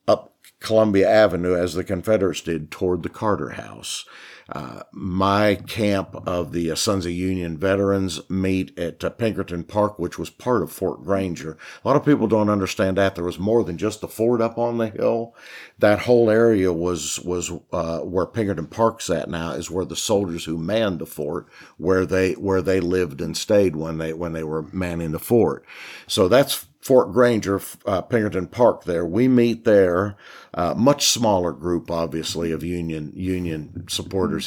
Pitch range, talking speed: 85-105 Hz, 180 wpm